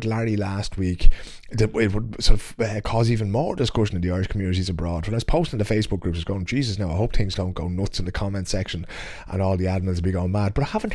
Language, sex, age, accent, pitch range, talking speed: English, male, 30-49, British, 95-135 Hz, 280 wpm